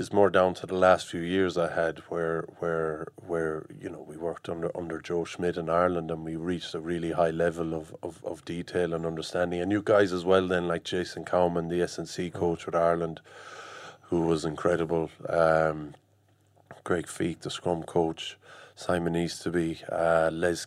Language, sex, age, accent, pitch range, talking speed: English, male, 30-49, Irish, 85-95 Hz, 190 wpm